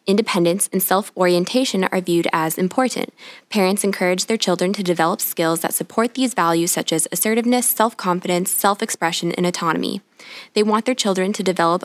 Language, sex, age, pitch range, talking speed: English, female, 10-29, 170-210 Hz, 155 wpm